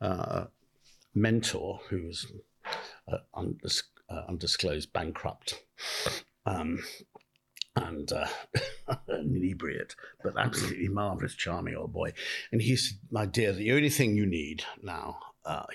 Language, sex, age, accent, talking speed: English, male, 60-79, British, 125 wpm